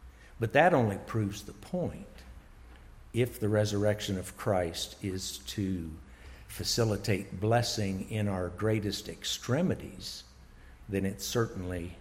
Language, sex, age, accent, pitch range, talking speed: English, male, 60-79, American, 85-110 Hz, 110 wpm